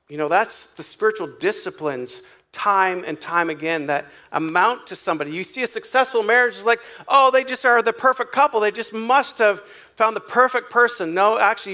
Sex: male